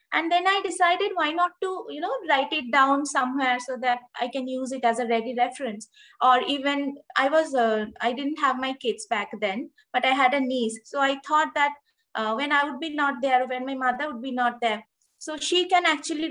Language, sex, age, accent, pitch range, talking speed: Hindi, female, 20-39, native, 245-300 Hz, 230 wpm